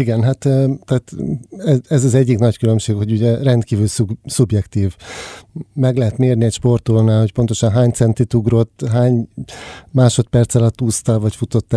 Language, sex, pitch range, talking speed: Hungarian, male, 110-130 Hz, 150 wpm